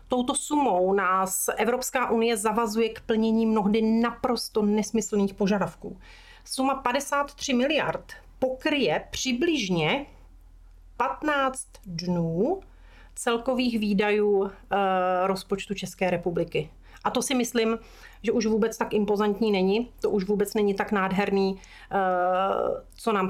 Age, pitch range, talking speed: 40-59, 200-250 Hz, 110 wpm